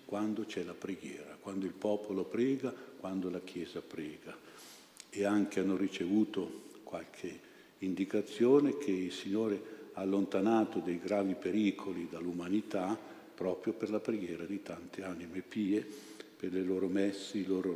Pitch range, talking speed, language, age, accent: 95-105 Hz, 140 wpm, Italian, 50-69, native